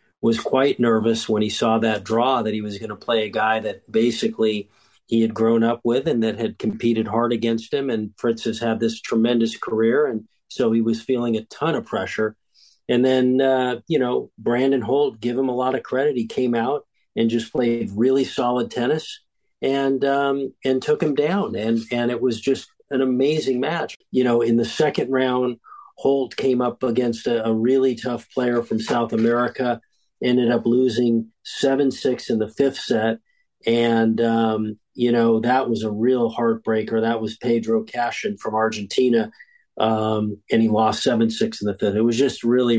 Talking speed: 190 wpm